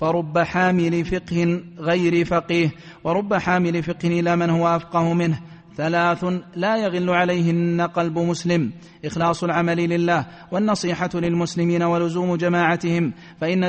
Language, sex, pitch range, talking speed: Arabic, male, 170-175 Hz, 120 wpm